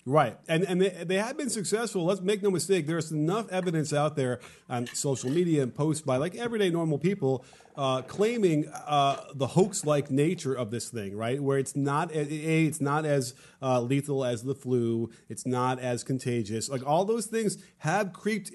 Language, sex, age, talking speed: English, male, 30-49, 205 wpm